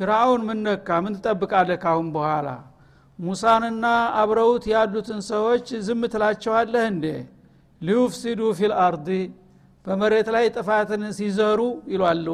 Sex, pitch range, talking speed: male, 175-220 Hz, 110 wpm